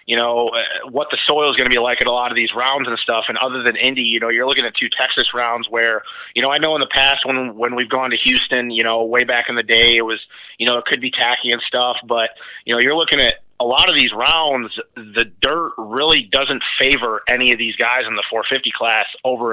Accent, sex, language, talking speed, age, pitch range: American, male, English, 265 wpm, 30-49, 115-130 Hz